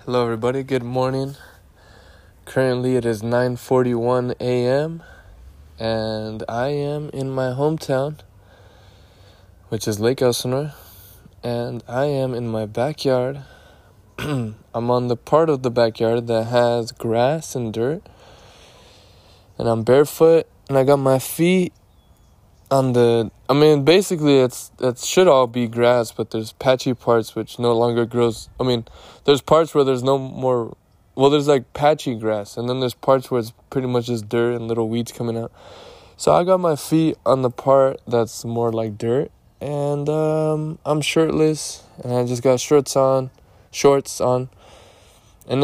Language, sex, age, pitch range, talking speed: English, male, 20-39, 115-140 Hz, 155 wpm